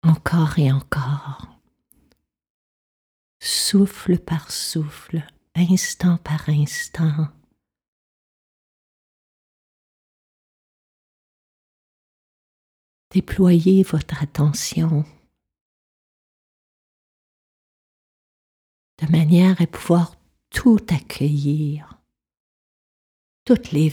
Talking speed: 50 wpm